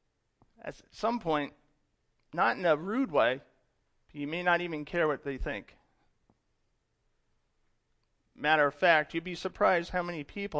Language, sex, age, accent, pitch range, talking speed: English, male, 40-59, American, 145-180 Hz, 155 wpm